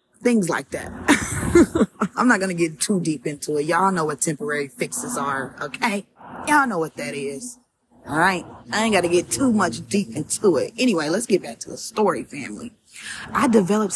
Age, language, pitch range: 20-39, English, 150-200 Hz